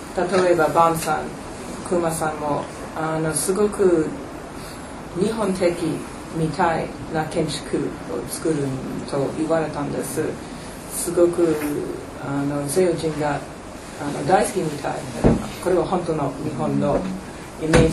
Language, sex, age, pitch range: Japanese, female, 30-49, 155-185 Hz